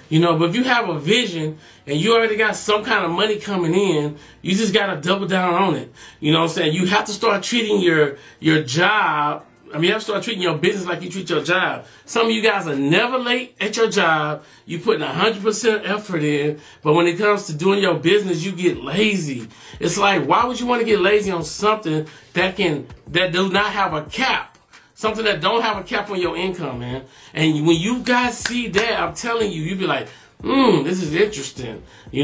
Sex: male